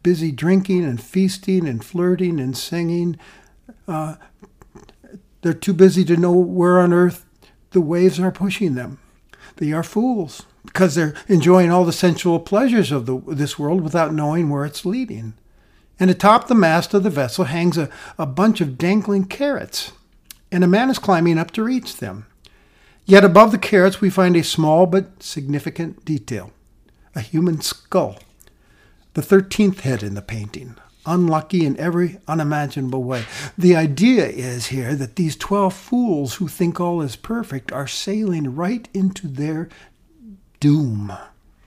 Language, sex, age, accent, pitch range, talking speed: English, male, 60-79, American, 145-190 Hz, 155 wpm